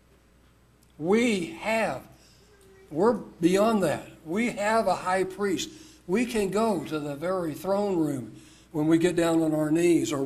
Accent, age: American, 60-79